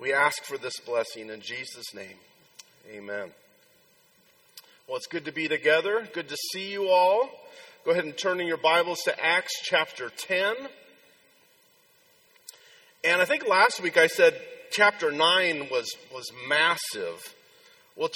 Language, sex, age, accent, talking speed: English, male, 40-59, American, 145 wpm